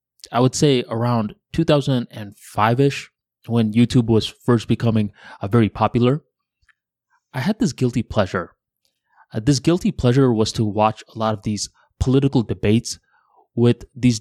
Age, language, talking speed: 20-39, English, 130 wpm